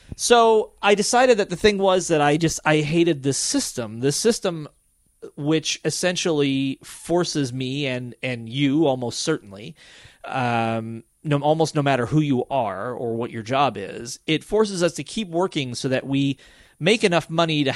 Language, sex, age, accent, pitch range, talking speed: English, male, 30-49, American, 120-165 Hz, 170 wpm